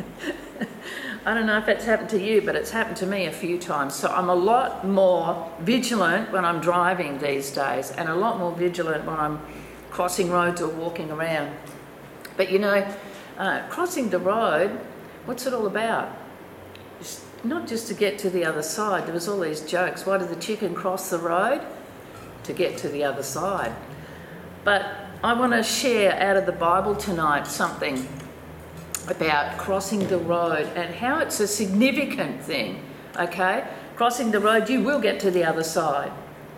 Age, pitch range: 50-69, 170-215 Hz